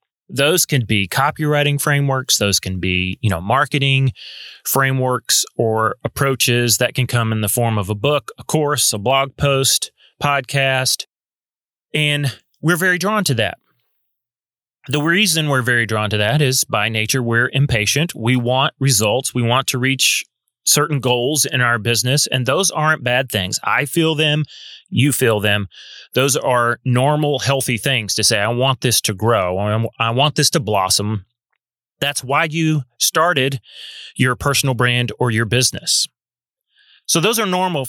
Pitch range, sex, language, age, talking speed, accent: 120-145 Hz, male, English, 30-49, 160 wpm, American